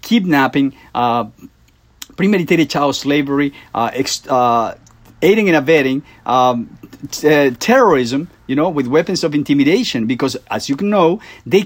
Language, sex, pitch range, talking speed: English, male, 135-205 Hz, 130 wpm